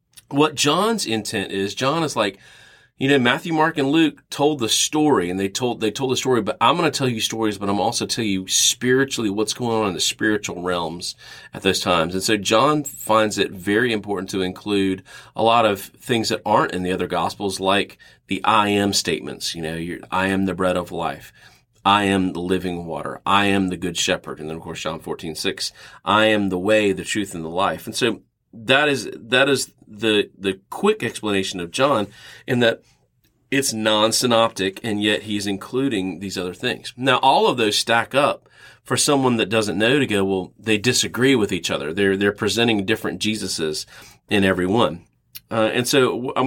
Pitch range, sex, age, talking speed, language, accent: 95-125 Hz, male, 30-49, 205 wpm, English, American